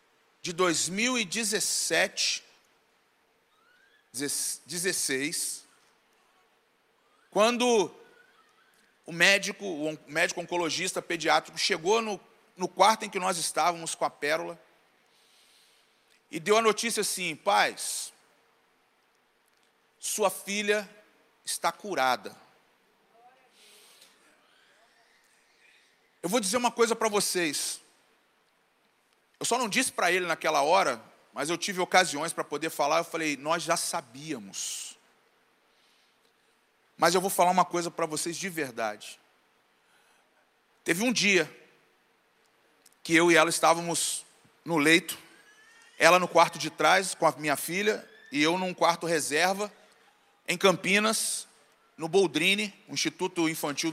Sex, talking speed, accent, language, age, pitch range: male, 110 wpm, Brazilian, Portuguese, 40-59, 165-215 Hz